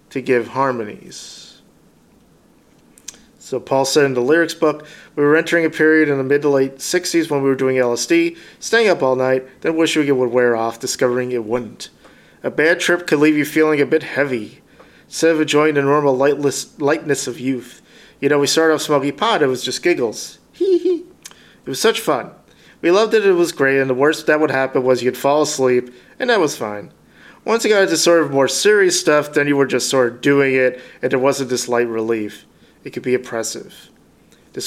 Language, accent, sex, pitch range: English, American, male, 125-155 Hz